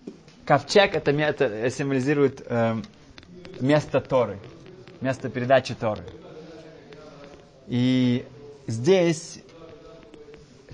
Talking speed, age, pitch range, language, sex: 65 wpm, 20-39, 120-150 Hz, Russian, male